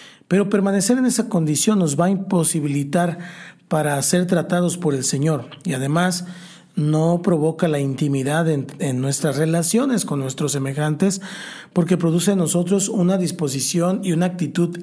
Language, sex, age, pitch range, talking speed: Spanish, male, 40-59, 150-180 Hz, 150 wpm